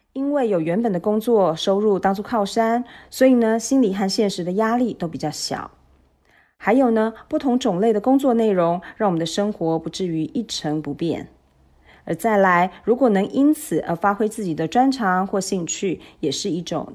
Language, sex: Chinese, female